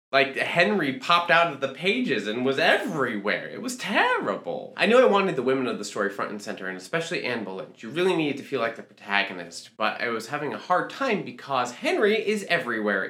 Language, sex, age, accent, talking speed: English, male, 20-39, American, 220 wpm